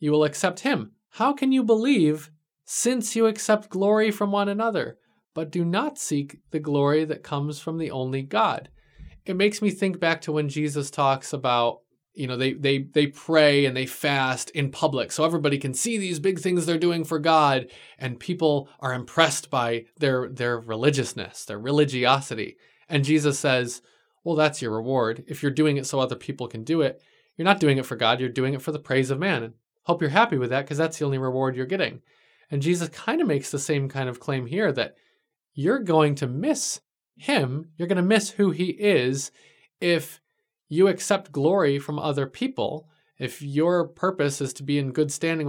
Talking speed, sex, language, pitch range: 200 wpm, male, English, 135-170 Hz